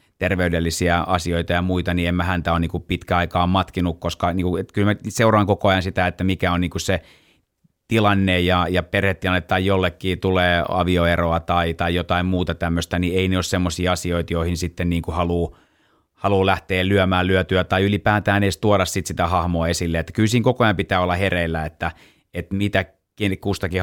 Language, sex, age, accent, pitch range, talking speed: Finnish, male, 30-49, native, 90-100 Hz, 165 wpm